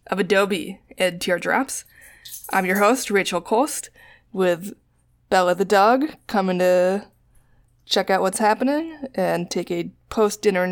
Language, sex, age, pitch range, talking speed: English, female, 20-39, 175-205 Hz, 130 wpm